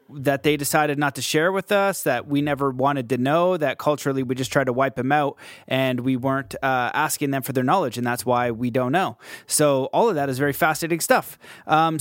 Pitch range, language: 135-170 Hz, English